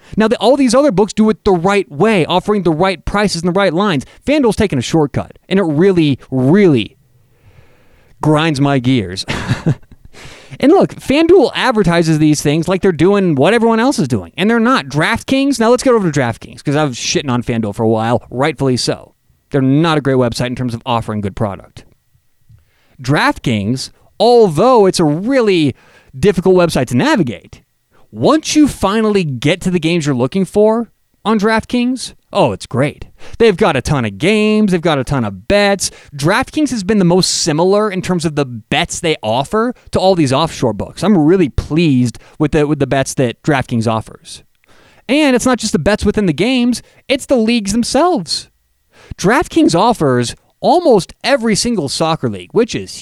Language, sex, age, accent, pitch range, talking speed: English, male, 30-49, American, 130-215 Hz, 180 wpm